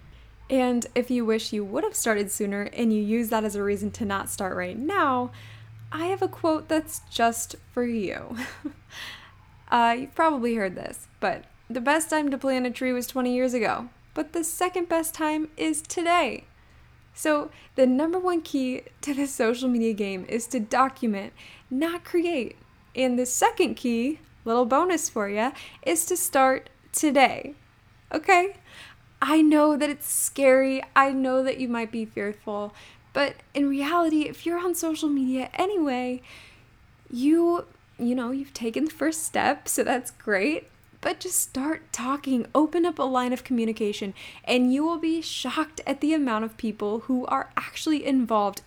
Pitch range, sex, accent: 230-315 Hz, female, American